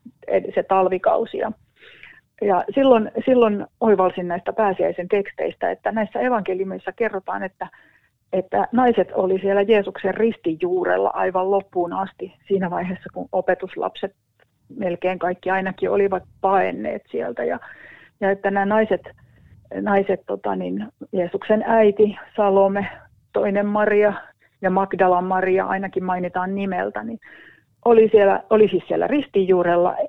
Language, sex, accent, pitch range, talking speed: Finnish, female, native, 185-215 Hz, 120 wpm